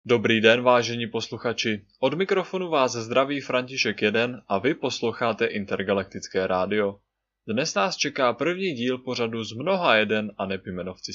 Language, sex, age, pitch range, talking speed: Czech, male, 20-39, 100-135 Hz, 140 wpm